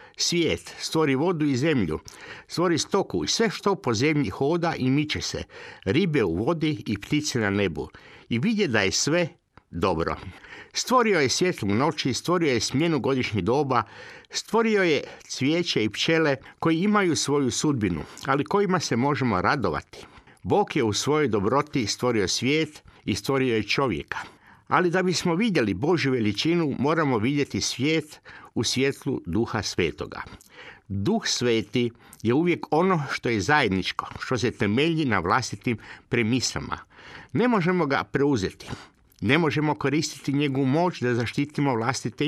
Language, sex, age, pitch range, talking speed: Croatian, male, 60-79, 115-165 Hz, 145 wpm